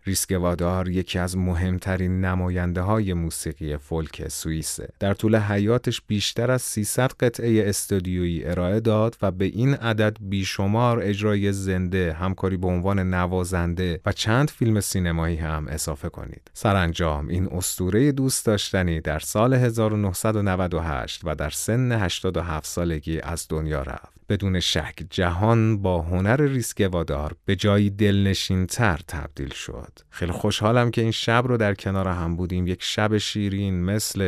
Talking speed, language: 135 wpm, Persian